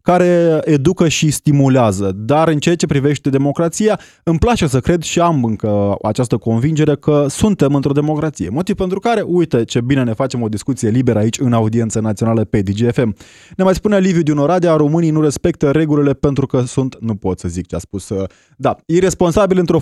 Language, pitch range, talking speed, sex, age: Romanian, 115-155 Hz, 190 wpm, male, 20-39